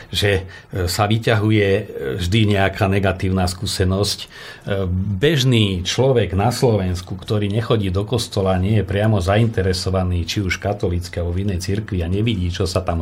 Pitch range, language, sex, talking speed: 95-115 Hz, Slovak, male, 145 wpm